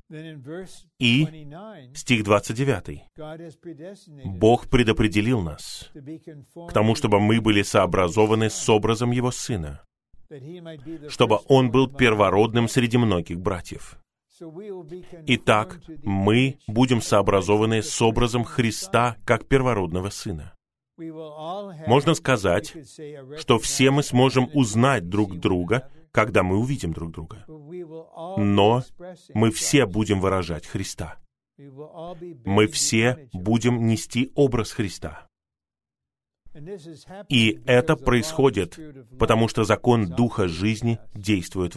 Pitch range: 105-145 Hz